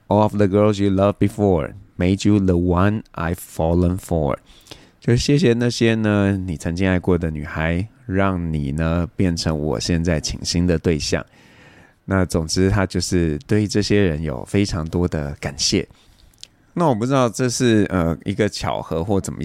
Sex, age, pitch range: male, 20-39, 85-105 Hz